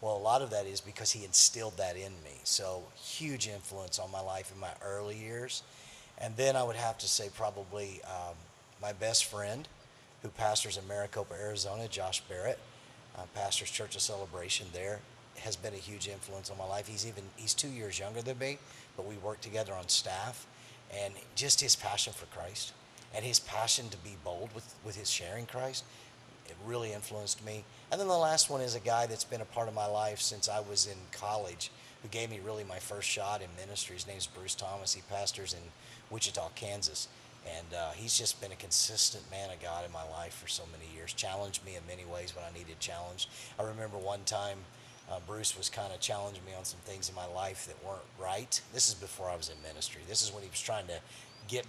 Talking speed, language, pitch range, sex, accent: 220 wpm, English, 95-115 Hz, male, American